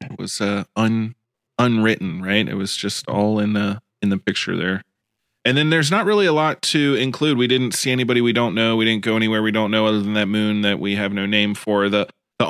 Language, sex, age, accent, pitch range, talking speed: English, male, 20-39, American, 105-115 Hz, 245 wpm